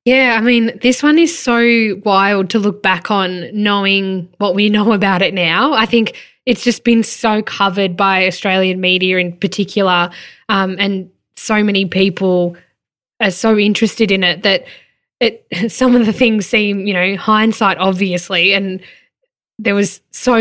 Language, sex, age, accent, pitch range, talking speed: English, female, 10-29, Australian, 185-215 Hz, 165 wpm